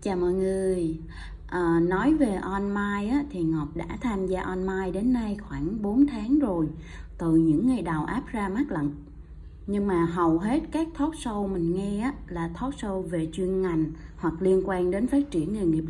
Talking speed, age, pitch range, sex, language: 195 wpm, 20-39, 165-215 Hz, female, Vietnamese